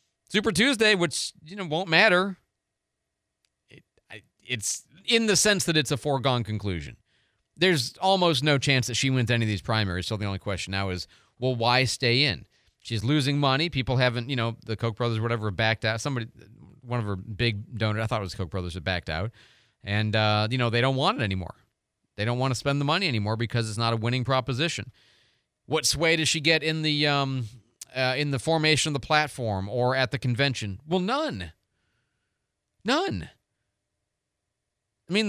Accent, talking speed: American, 195 wpm